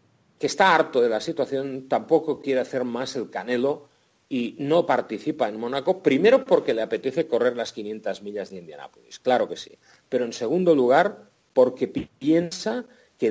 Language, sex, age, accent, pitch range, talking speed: Spanish, male, 40-59, Spanish, 130-200 Hz, 165 wpm